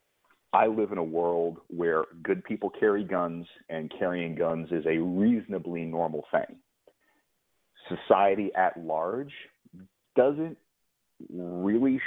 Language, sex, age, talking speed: English, male, 40-59, 115 wpm